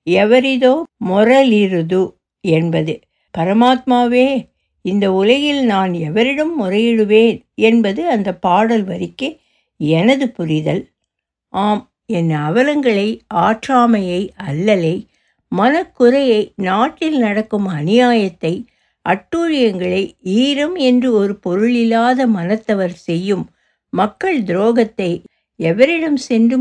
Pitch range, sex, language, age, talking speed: 185-260 Hz, female, Tamil, 60-79, 80 wpm